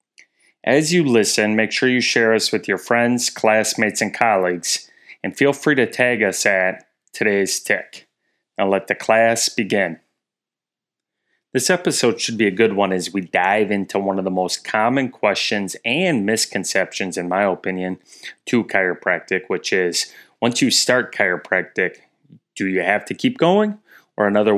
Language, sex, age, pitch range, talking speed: English, male, 30-49, 95-125 Hz, 160 wpm